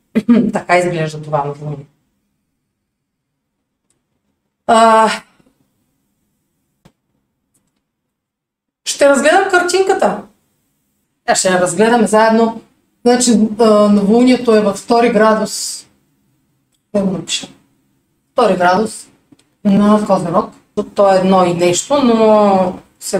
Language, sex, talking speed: Bulgarian, female, 80 wpm